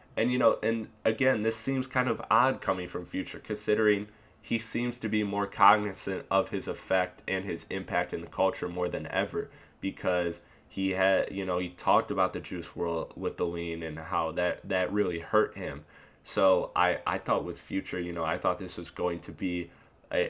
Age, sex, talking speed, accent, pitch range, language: 20-39, male, 205 wpm, American, 90-105 Hz, English